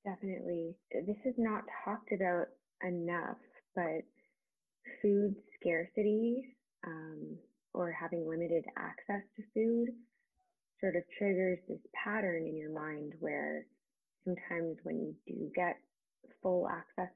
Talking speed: 115 wpm